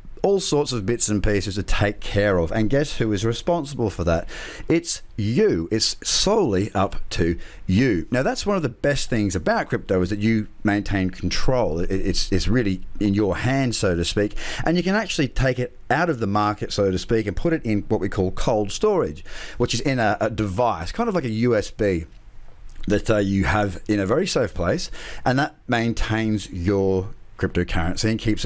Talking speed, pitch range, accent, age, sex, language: 200 wpm, 95-125 Hz, Australian, 40-59, male, English